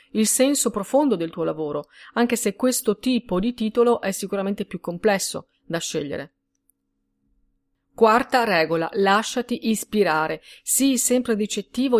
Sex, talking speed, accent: female, 125 wpm, native